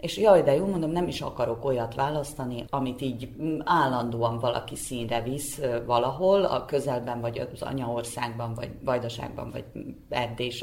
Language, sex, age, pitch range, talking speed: Hungarian, female, 30-49, 125-145 Hz, 145 wpm